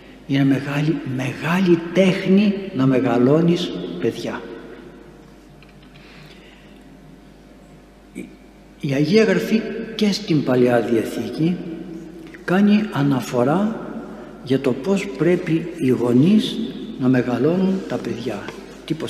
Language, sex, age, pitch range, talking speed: Greek, male, 60-79, 120-190 Hz, 85 wpm